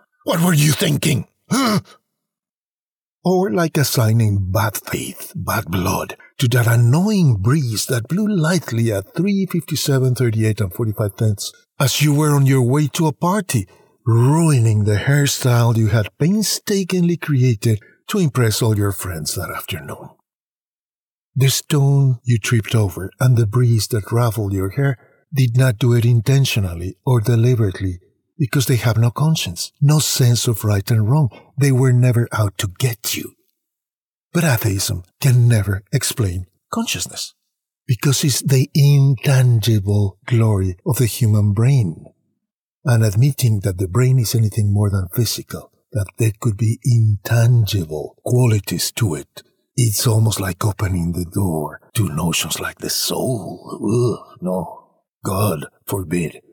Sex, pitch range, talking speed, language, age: male, 105-140 Hz, 140 wpm, English, 60-79